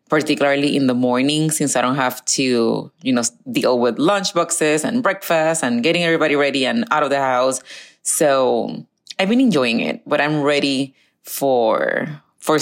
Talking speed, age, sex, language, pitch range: 170 wpm, 30-49, female, English, 135-180 Hz